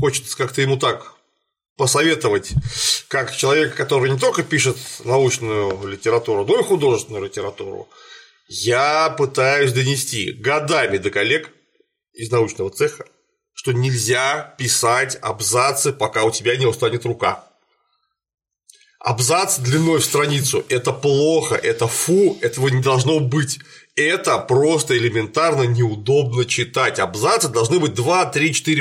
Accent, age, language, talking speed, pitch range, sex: native, 30-49, Russian, 115 wpm, 125-180 Hz, male